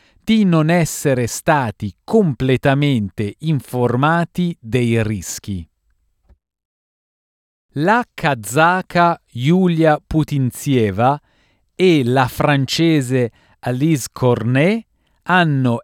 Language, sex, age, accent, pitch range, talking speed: Italian, male, 40-59, native, 115-155 Hz, 70 wpm